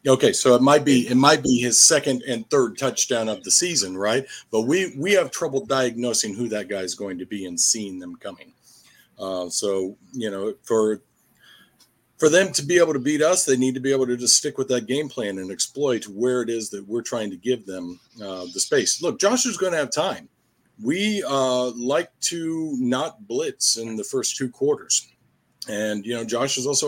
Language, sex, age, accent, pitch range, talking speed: English, male, 40-59, American, 110-135 Hz, 215 wpm